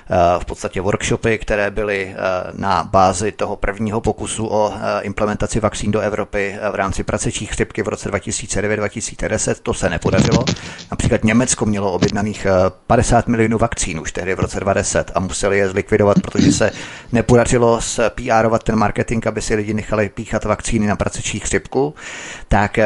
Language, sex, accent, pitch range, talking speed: Czech, male, native, 100-110 Hz, 150 wpm